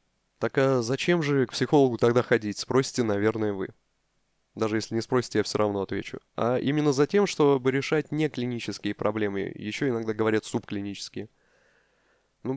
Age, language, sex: 20-39, Russian, male